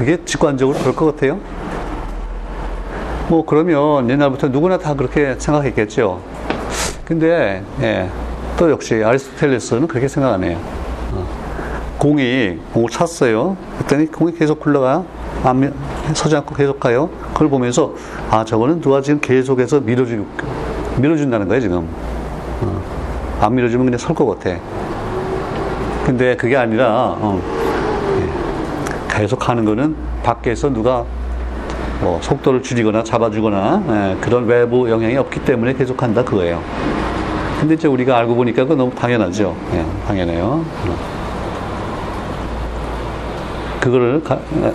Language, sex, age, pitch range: Korean, male, 40-59, 100-140 Hz